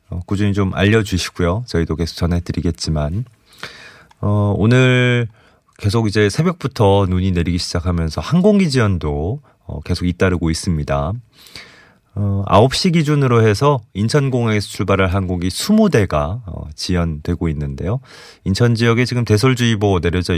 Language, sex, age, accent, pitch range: Korean, male, 30-49, native, 85-110 Hz